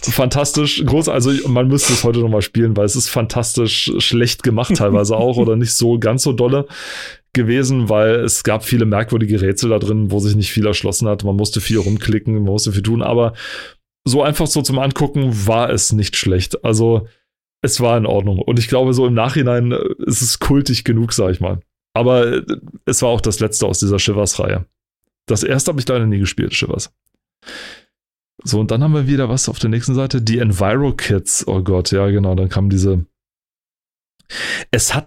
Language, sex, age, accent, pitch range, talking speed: German, male, 30-49, German, 105-135 Hz, 195 wpm